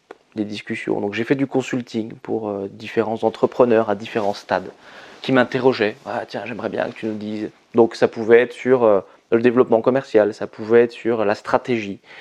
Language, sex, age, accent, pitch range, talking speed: English, male, 20-39, French, 110-135 Hz, 185 wpm